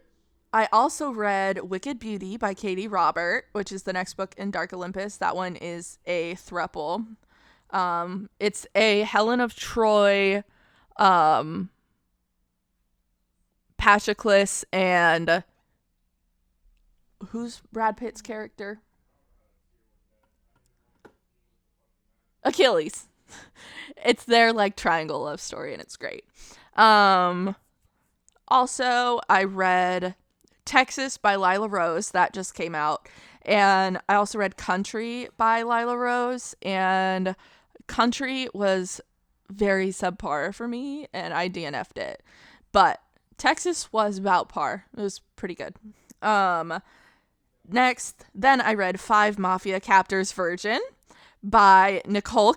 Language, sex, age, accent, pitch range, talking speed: English, female, 20-39, American, 185-225 Hz, 110 wpm